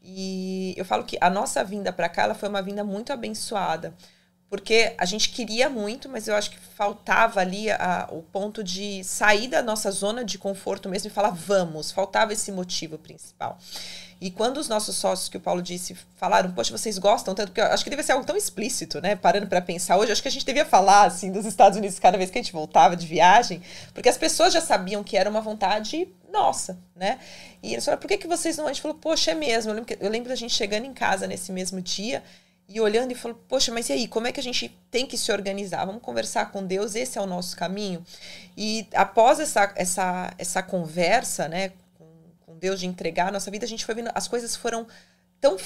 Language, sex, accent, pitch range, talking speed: Portuguese, female, Brazilian, 185-225 Hz, 225 wpm